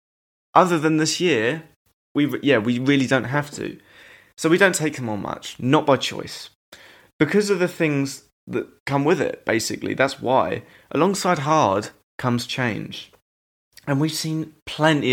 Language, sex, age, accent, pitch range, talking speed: English, male, 20-39, British, 115-150 Hz, 160 wpm